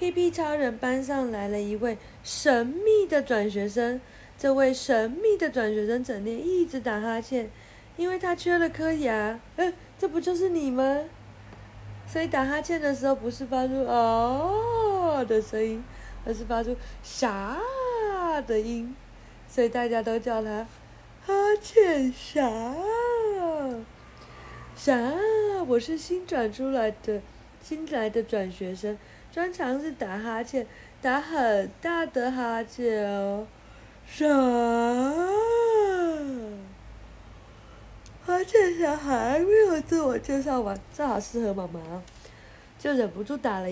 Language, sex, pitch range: Chinese, female, 225-320 Hz